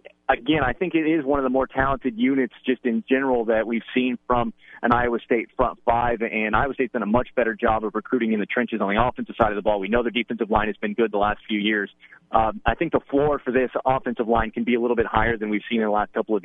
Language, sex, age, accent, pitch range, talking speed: English, male, 30-49, American, 110-130 Hz, 285 wpm